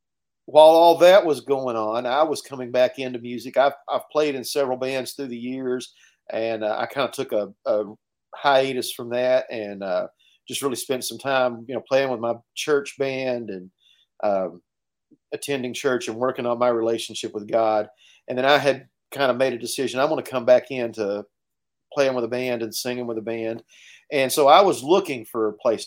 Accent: American